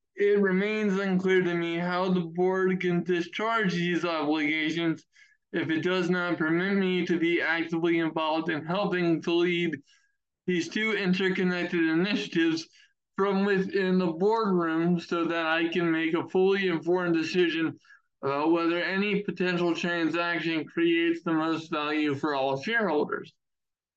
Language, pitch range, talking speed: English, 160-195 Hz, 140 wpm